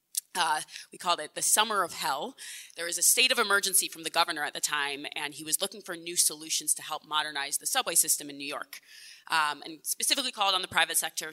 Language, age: English, 20-39